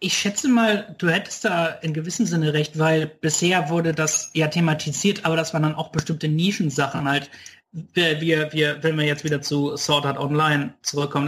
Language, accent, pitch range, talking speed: German, German, 145-170 Hz, 175 wpm